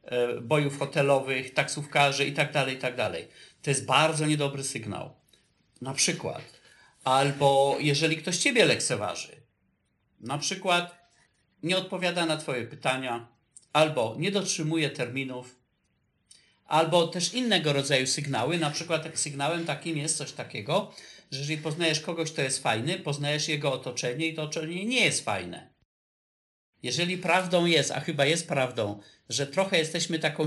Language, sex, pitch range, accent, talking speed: Polish, male, 145-180 Hz, native, 140 wpm